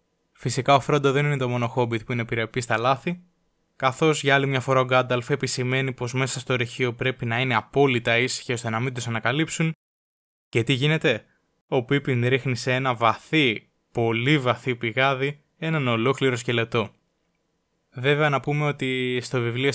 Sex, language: male, Greek